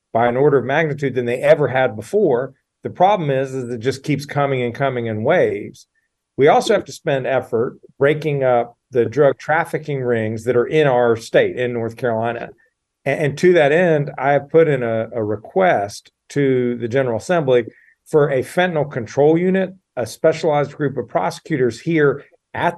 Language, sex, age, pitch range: English, male, 40-59, 120-145 Hz